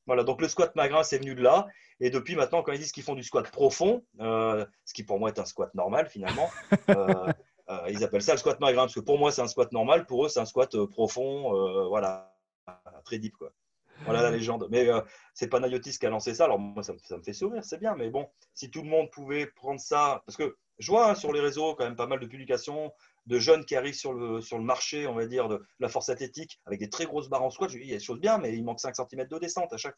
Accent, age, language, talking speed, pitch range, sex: French, 30-49, French, 280 wpm, 125-170 Hz, male